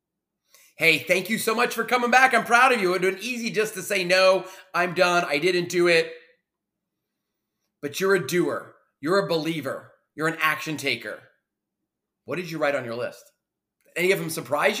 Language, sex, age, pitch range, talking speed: English, male, 30-49, 155-215 Hz, 205 wpm